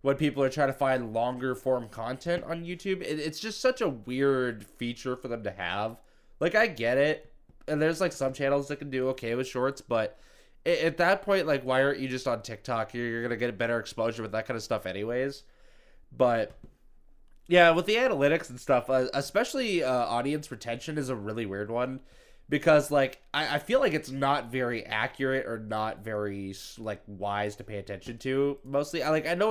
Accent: American